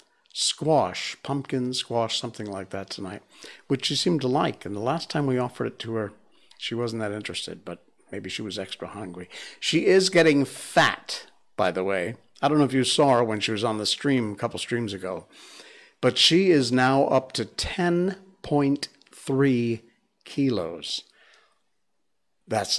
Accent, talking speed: American, 170 wpm